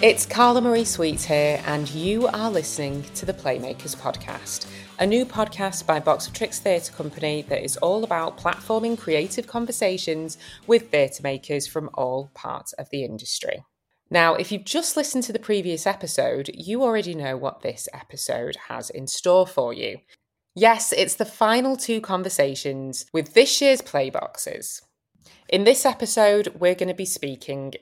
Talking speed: 160 wpm